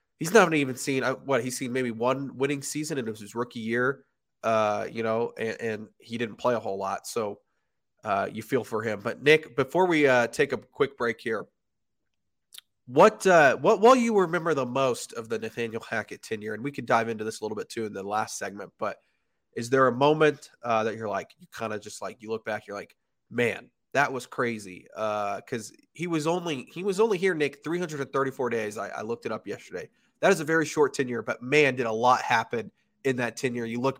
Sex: male